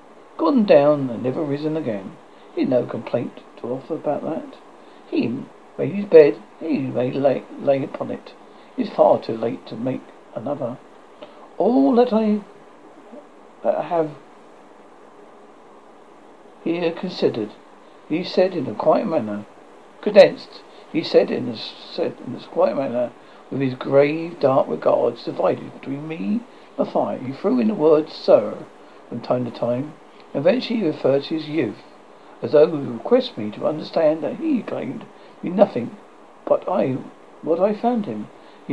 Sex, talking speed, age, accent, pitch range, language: male, 155 wpm, 60-79, British, 140-205 Hz, English